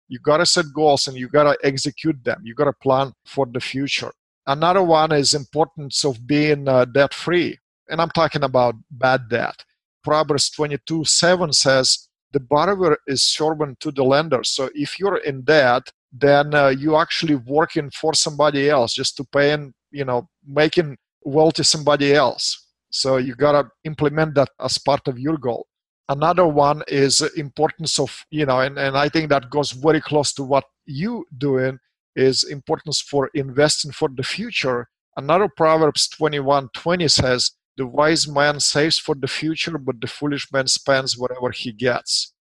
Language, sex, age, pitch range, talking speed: English, male, 50-69, 135-155 Hz, 175 wpm